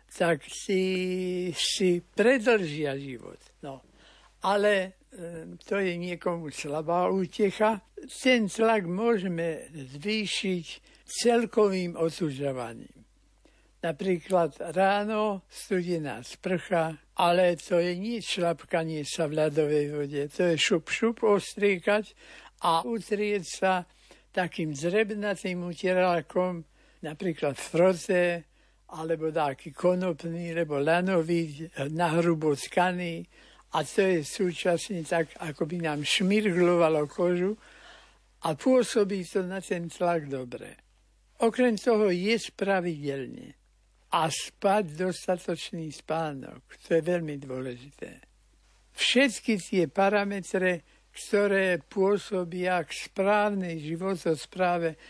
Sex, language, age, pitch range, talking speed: male, Slovak, 60-79, 165-200 Hz, 100 wpm